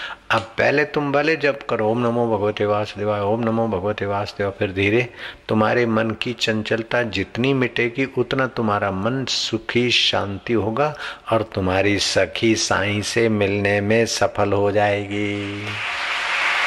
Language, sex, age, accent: Hindi, male, 50-69, native